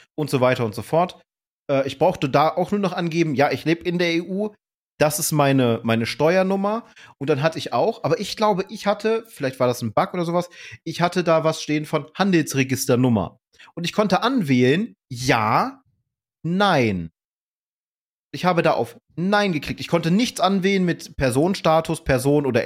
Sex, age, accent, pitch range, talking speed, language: male, 30-49, German, 125-175 Hz, 180 wpm, German